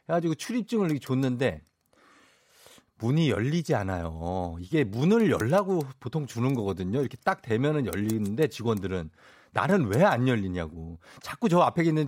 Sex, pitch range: male, 100-160 Hz